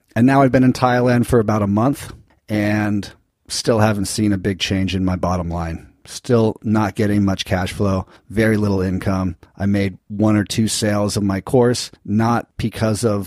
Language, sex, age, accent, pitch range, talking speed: English, male, 40-59, American, 95-115 Hz, 190 wpm